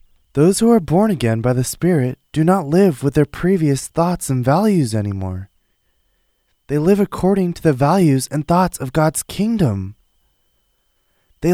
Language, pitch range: Korean, 120-180 Hz